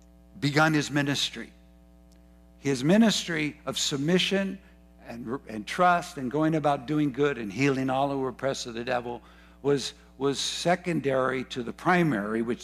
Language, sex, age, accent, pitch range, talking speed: English, male, 60-79, American, 110-165 Hz, 145 wpm